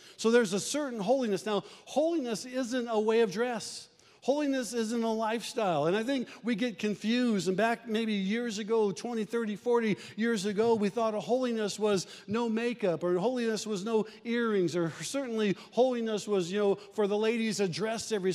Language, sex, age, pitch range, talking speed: English, male, 50-69, 200-235 Hz, 185 wpm